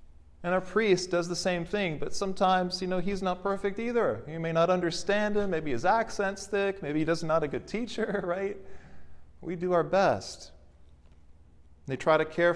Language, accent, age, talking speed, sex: English, American, 40-59, 190 wpm, male